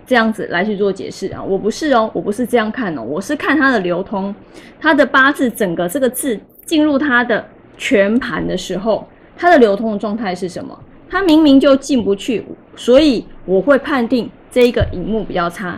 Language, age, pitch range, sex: Chinese, 20-39, 195-250 Hz, female